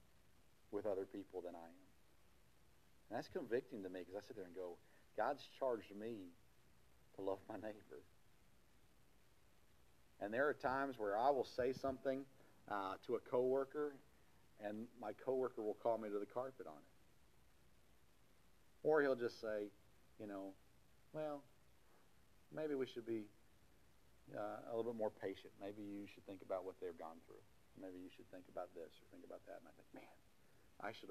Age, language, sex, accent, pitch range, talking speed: 50-69, English, male, American, 95-115 Hz, 175 wpm